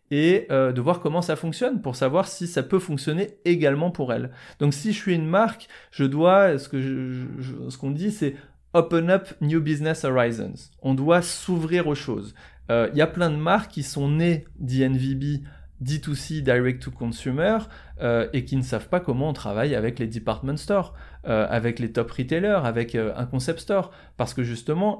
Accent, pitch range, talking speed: French, 125-170 Hz, 210 wpm